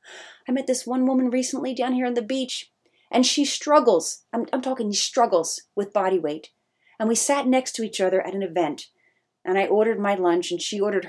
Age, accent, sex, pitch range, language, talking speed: 30-49, American, female, 190-280 Hz, English, 210 wpm